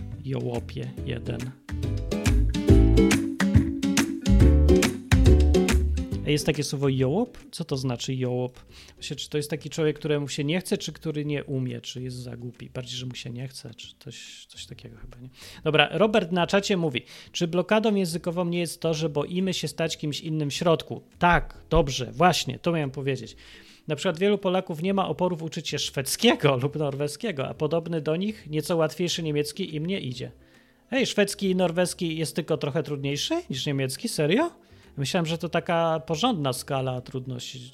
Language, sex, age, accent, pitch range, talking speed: Polish, male, 30-49, native, 130-175 Hz, 165 wpm